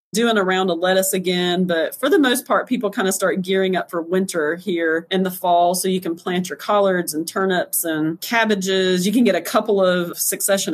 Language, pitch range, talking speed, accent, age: English, 170-200 Hz, 225 wpm, American, 30-49